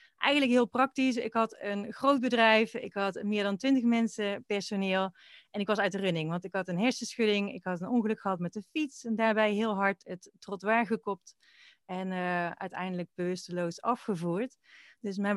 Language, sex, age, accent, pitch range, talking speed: Dutch, female, 30-49, Dutch, 180-220 Hz, 185 wpm